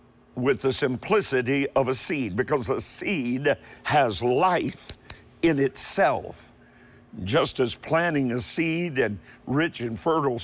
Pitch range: 125-160 Hz